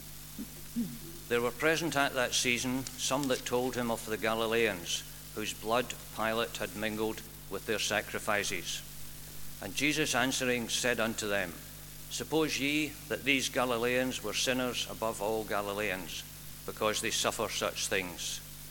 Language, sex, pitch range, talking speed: English, male, 110-135 Hz, 135 wpm